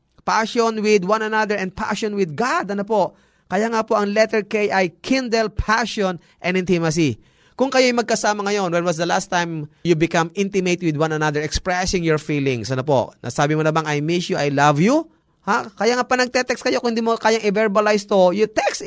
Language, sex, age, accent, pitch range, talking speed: Filipino, male, 20-39, native, 160-220 Hz, 205 wpm